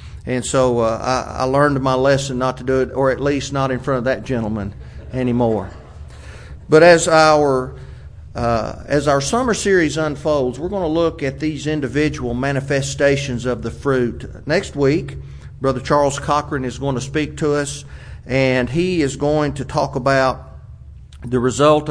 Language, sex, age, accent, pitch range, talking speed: English, male, 40-59, American, 125-155 Hz, 170 wpm